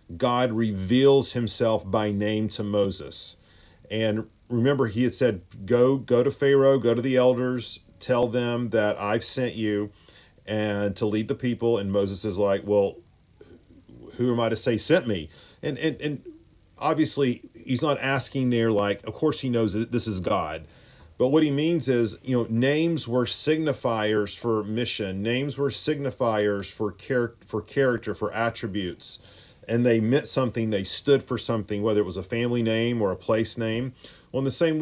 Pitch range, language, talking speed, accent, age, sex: 105-135 Hz, English, 180 wpm, American, 40-59, male